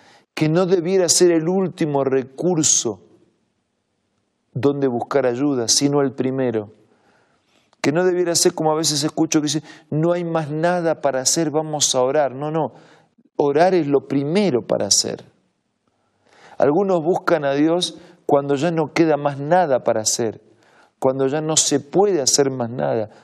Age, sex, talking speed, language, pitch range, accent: 40-59, male, 155 wpm, Spanish, 130-170 Hz, Argentinian